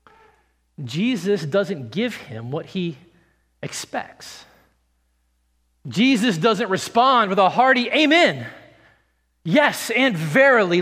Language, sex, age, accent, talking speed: English, male, 40-59, American, 95 wpm